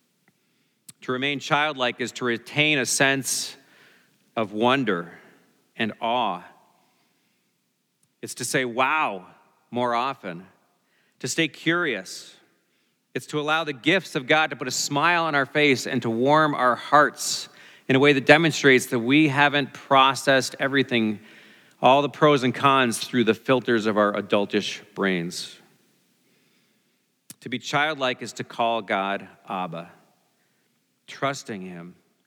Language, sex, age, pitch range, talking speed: English, male, 40-59, 110-145 Hz, 135 wpm